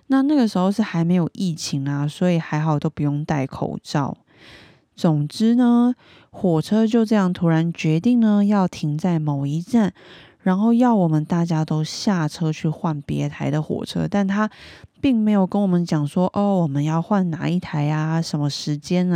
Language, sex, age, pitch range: Chinese, female, 20-39, 155-210 Hz